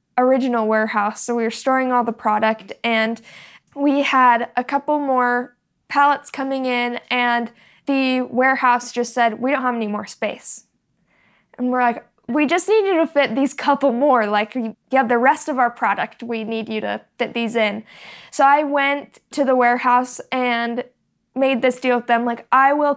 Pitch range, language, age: 230-270 Hz, English, 10-29